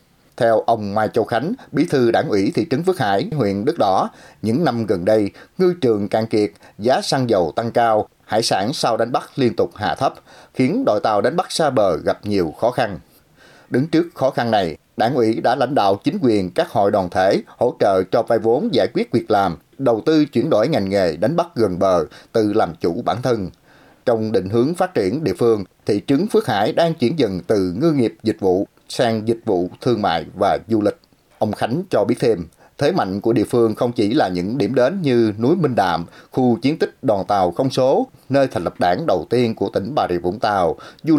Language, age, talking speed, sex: Vietnamese, 30-49, 225 wpm, male